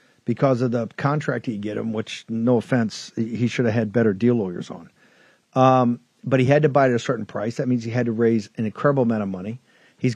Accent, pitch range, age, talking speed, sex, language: American, 115-135 Hz, 50-69, 240 wpm, male, English